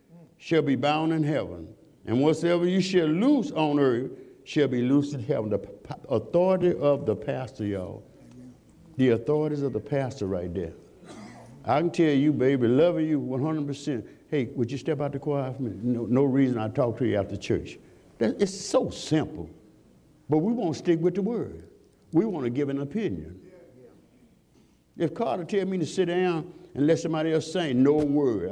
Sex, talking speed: male, 180 wpm